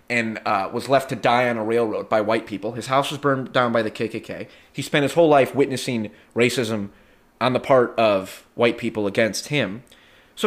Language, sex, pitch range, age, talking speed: English, male, 110-145 Hz, 30-49, 205 wpm